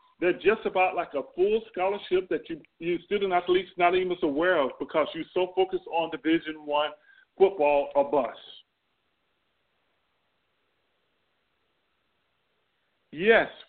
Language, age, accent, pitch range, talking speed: English, 50-69, American, 160-245 Hz, 125 wpm